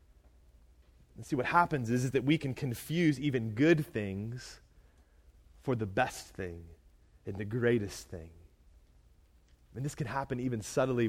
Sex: male